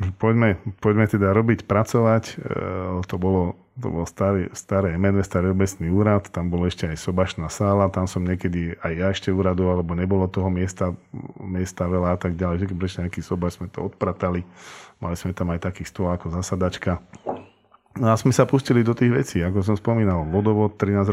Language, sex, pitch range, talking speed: Slovak, male, 90-100 Hz, 185 wpm